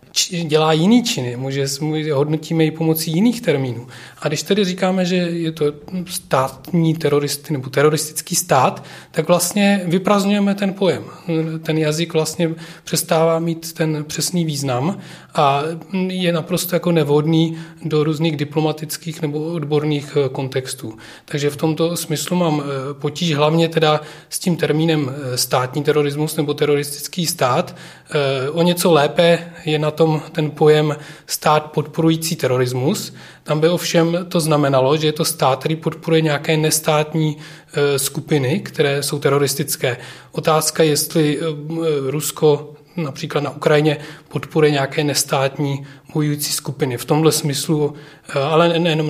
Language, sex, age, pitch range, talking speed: Czech, male, 30-49, 145-165 Hz, 130 wpm